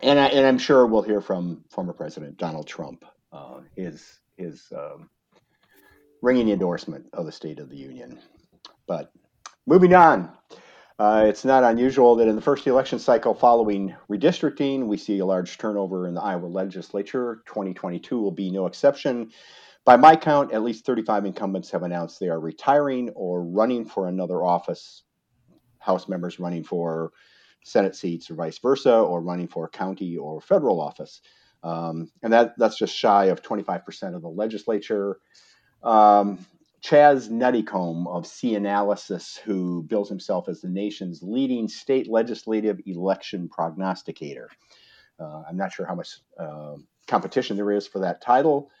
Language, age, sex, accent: English, 50-69, male, American